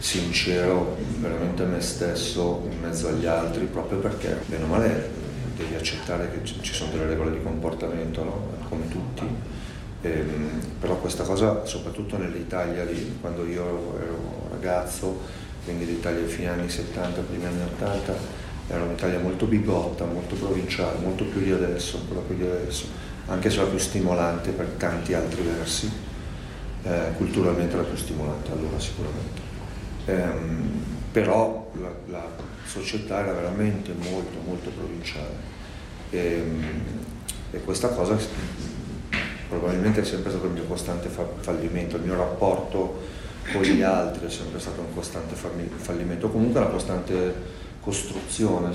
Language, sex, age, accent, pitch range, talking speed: Italian, male, 40-59, native, 85-95 Hz, 140 wpm